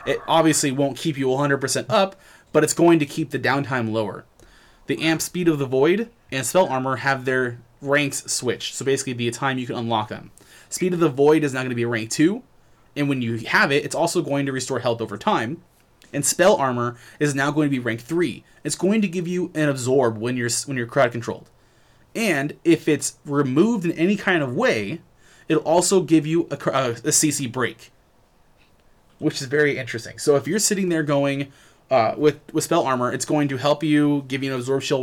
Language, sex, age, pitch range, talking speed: English, male, 20-39, 125-155 Hz, 215 wpm